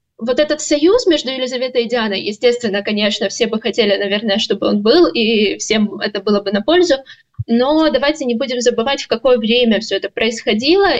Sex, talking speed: female, 185 wpm